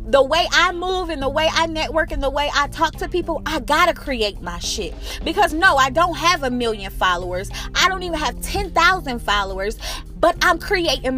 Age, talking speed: 30-49, 210 wpm